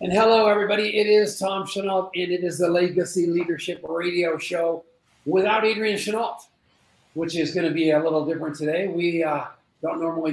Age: 50-69